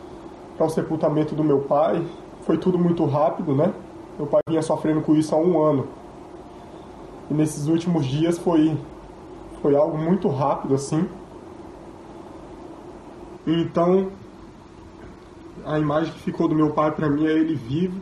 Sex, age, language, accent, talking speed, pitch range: male, 20-39, Portuguese, Brazilian, 145 wpm, 150-180 Hz